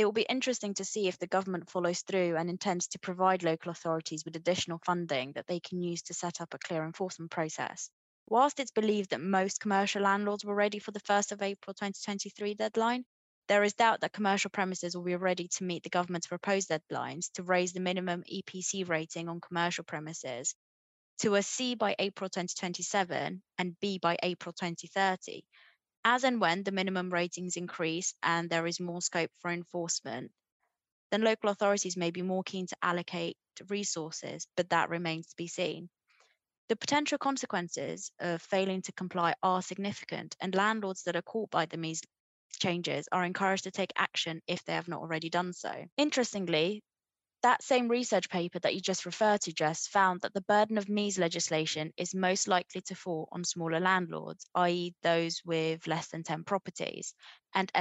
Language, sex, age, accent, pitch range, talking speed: English, female, 20-39, British, 170-195 Hz, 180 wpm